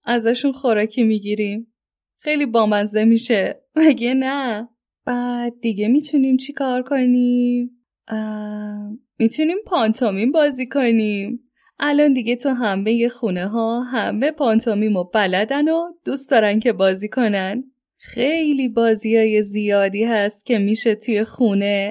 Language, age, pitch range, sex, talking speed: English, 10-29, 205-255 Hz, female, 115 wpm